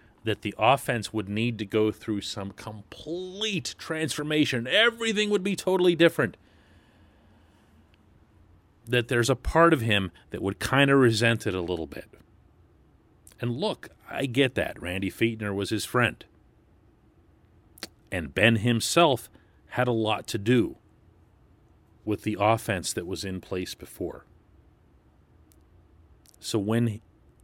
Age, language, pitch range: 40-59, English, 100-160 Hz